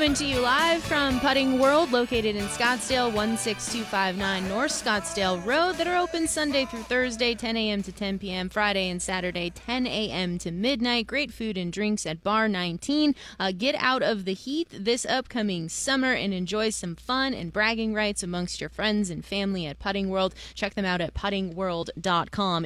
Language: English